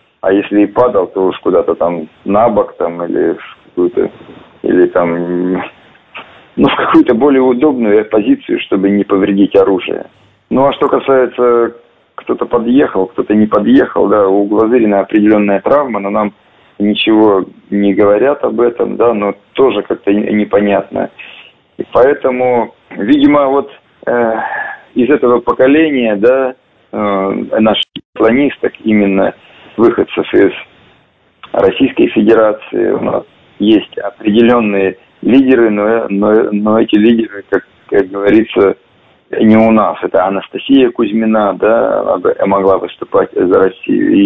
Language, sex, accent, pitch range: Russian, male, native, 105-155 Hz